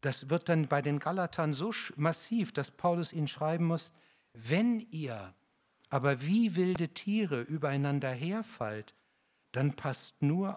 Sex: male